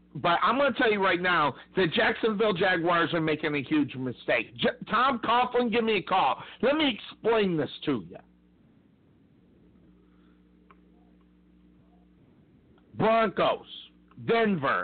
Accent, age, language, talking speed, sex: American, 50-69, English, 120 wpm, male